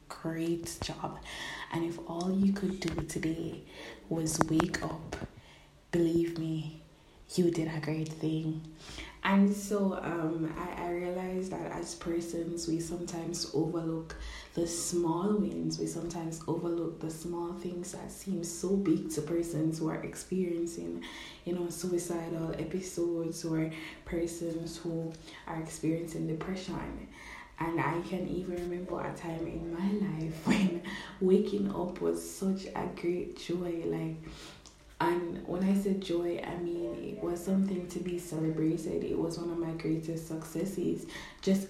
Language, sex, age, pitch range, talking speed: English, female, 20-39, 160-180 Hz, 140 wpm